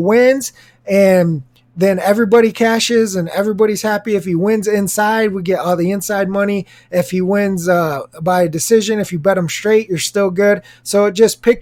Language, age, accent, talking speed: English, 20-39, American, 185 wpm